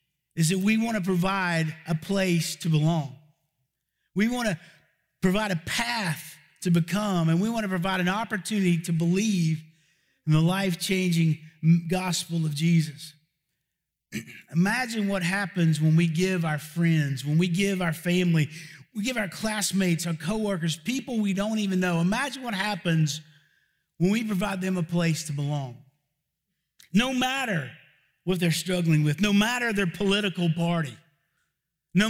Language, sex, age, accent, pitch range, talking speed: English, male, 50-69, American, 155-195 Hz, 145 wpm